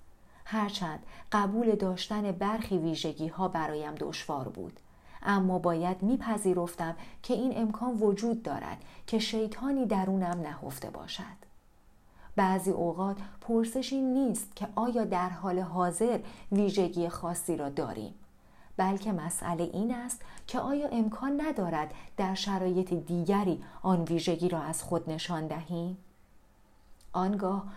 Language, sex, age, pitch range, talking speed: Persian, female, 40-59, 170-220 Hz, 115 wpm